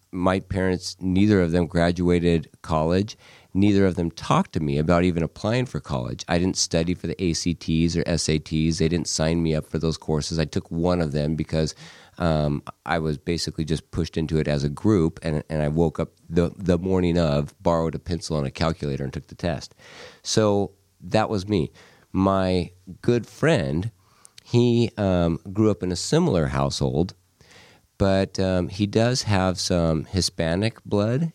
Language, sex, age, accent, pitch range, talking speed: English, male, 40-59, American, 80-95 Hz, 180 wpm